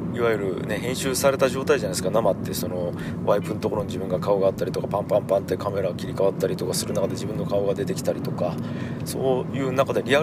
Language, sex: Japanese, male